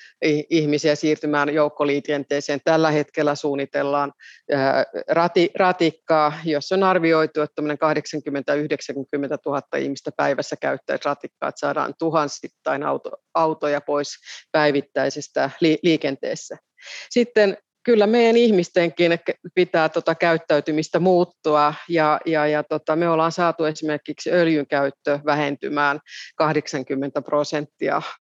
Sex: female